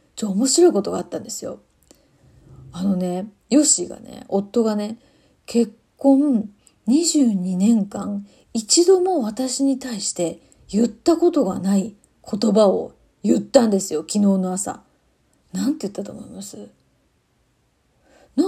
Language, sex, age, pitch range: Japanese, female, 30-49, 195-275 Hz